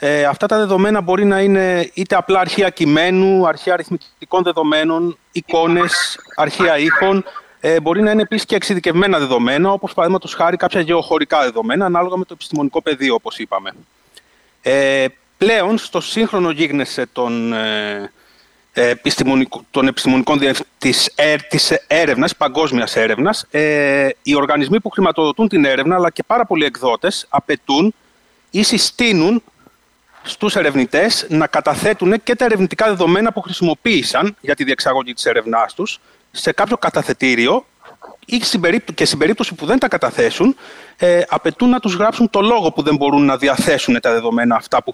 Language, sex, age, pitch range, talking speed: Greek, male, 30-49, 150-215 Hz, 140 wpm